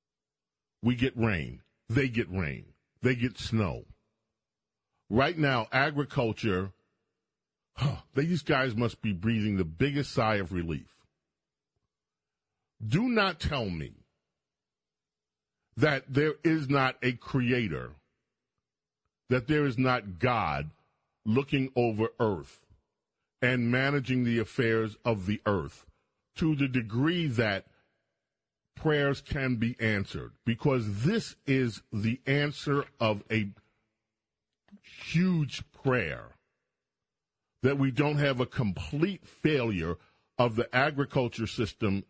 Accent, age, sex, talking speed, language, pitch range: American, 40-59, male, 105 wpm, English, 110-140 Hz